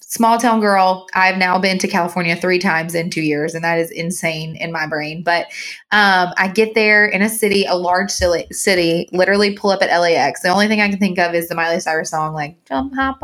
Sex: female